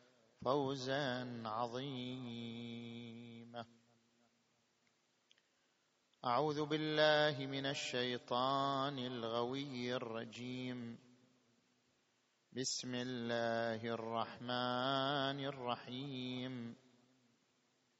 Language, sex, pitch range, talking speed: Arabic, male, 120-140 Hz, 40 wpm